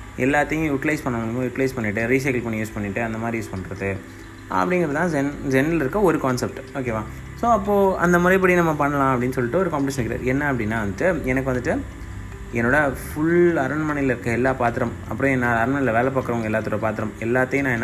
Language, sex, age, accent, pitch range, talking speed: Tamil, male, 30-49, native, 115-145 Hz, 175 wpm